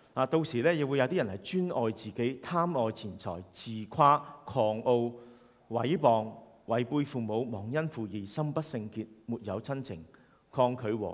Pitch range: 100-130 Hz